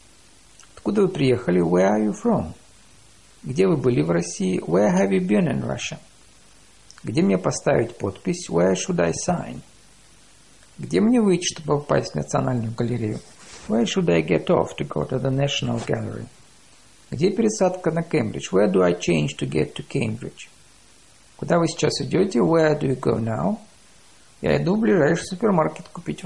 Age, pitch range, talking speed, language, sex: 50-69, 110-165 Hz, 160 wpm, Russian, male